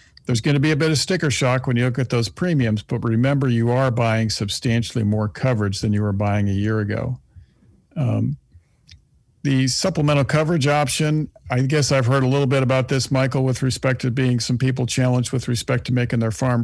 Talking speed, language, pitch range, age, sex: 205 wpm, English, 115-140 Hz, 50-69, male